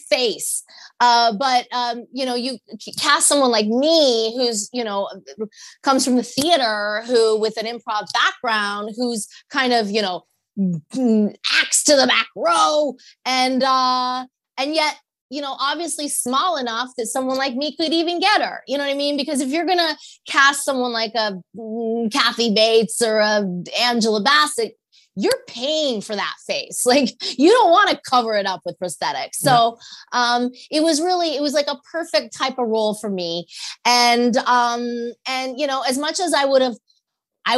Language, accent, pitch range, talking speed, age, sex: English, American, 225-290 Hz, 180 wpm, 20-39, female